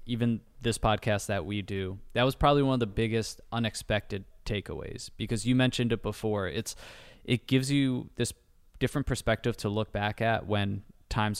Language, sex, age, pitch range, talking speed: English, male, 20-39, 100-115 Hz, 175 wpm